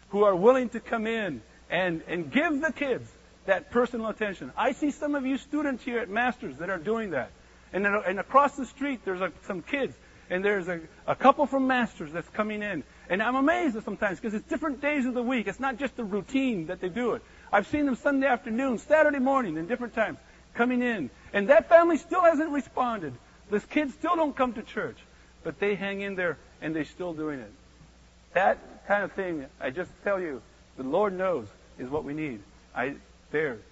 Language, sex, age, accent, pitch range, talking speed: English, male, 50-69, American, 175-250 Hz, 210 wpm